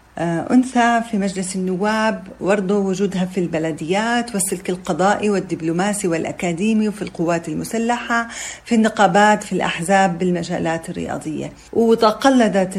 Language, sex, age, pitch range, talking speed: Arabic, female, 40-59, 175-210 Hz, 105 wpm